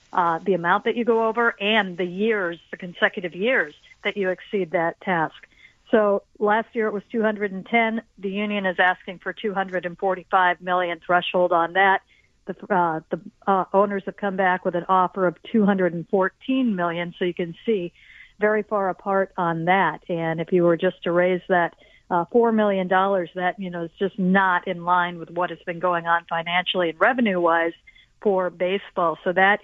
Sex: female